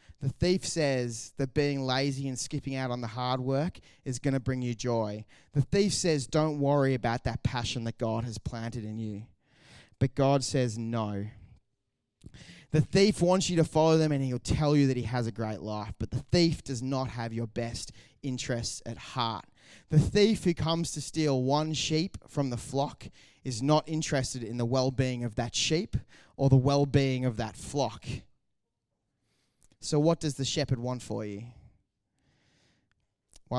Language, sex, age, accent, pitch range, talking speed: English, male, 20-39, Australian, 120-145 Hz, 180 wpm